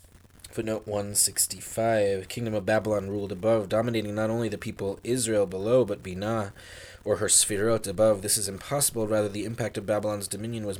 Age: 20-39